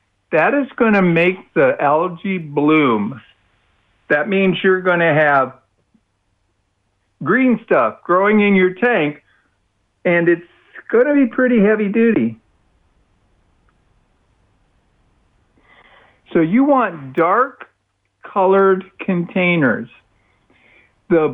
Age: 60-79